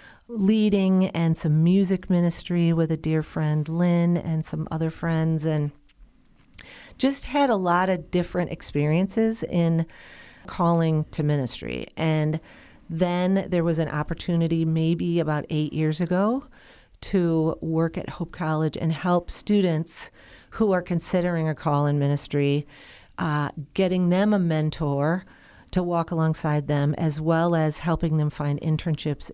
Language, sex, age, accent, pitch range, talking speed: English, female, 40-59, American, 150-175 Hz, 140 wpm